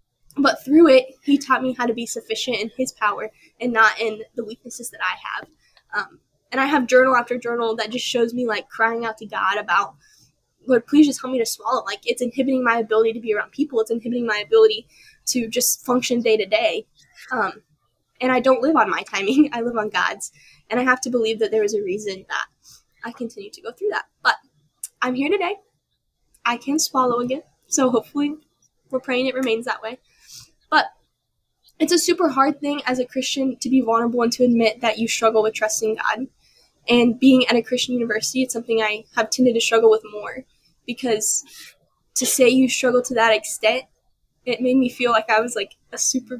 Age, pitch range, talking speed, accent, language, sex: 10-29, 225-270 Hz, 210 wpm, American, English, female